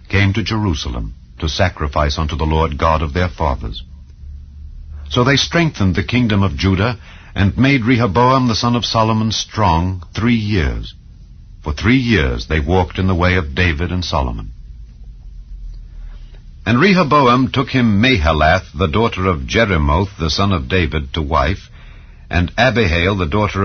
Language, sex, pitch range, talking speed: English, male, 75-110 Hz, 150 wpm